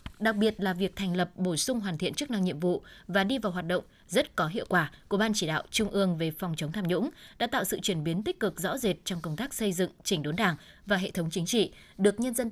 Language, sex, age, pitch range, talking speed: Vietnamese, female, 20-39, 180-230 Hz, 285 wpm